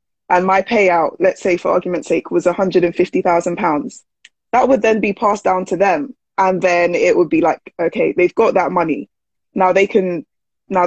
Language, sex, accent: English, female, British